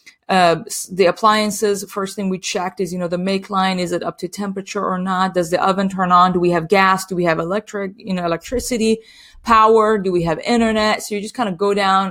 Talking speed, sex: 240 wpm, female